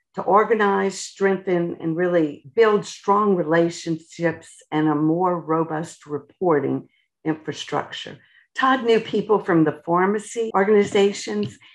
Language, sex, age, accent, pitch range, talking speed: English, female, 50-69, American, 170-210 Hz, 105 wpm